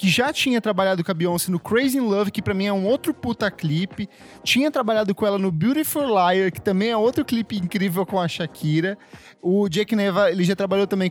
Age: 10-29